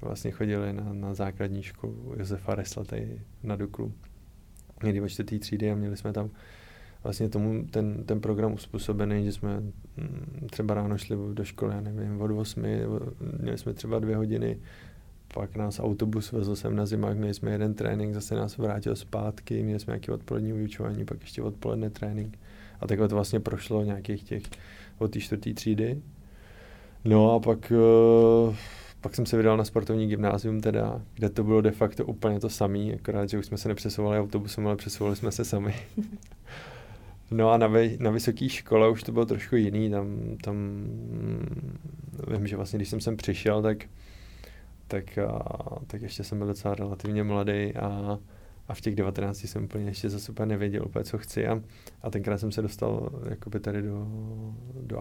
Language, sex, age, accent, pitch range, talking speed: Czech, male, 20-39, native, 100-110 Hz, 175 wpm